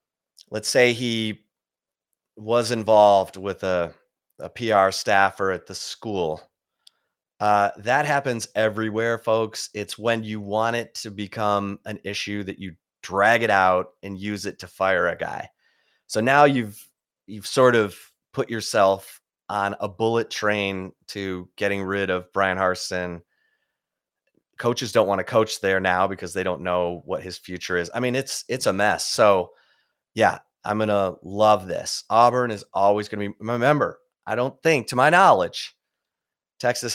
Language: English